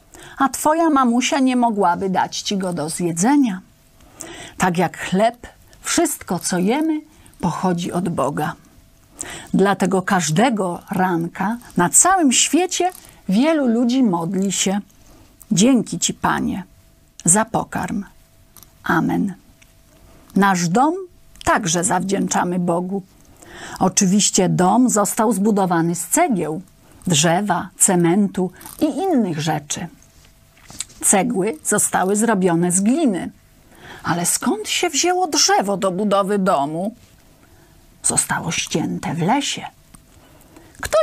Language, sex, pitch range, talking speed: Polish, female, 180-250 Hz, 100 wpm